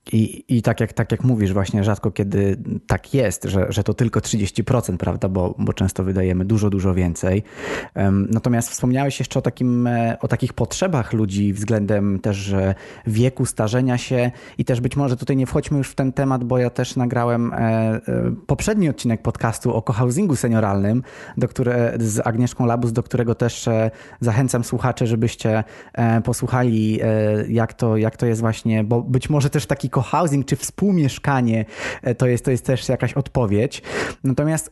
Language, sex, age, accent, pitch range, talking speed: Polish, male, 20-39, native, 110-140 Hz, 160 wpm